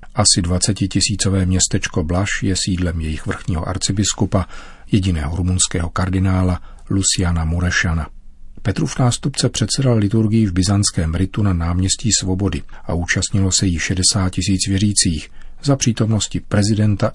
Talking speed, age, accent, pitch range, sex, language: 120 wpm, 40-59, native, 90-105 Hz, male, Czech